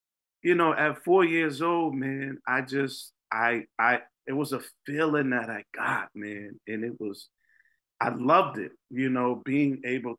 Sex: male